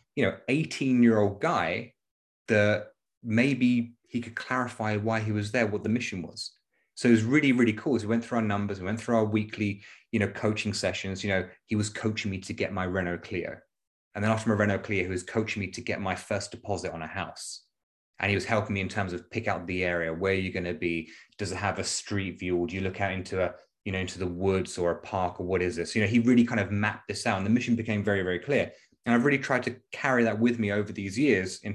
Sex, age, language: male, 30-49, English